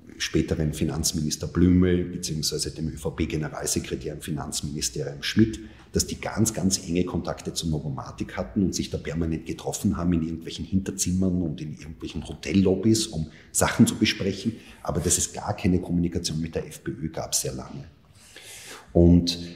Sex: male